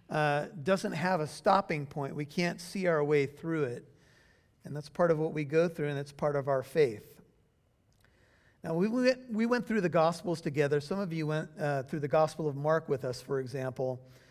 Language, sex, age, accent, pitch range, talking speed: English, male, 50-69, American, 140-185 Hz, 210 wpm